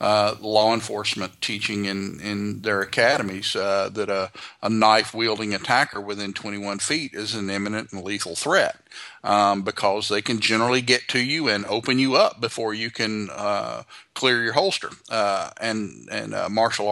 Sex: male